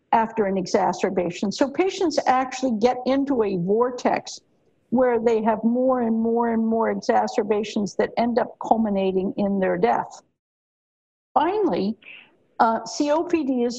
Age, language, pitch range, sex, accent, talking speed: 60-79, English, 205-270 Hz, female, American, 130 wpm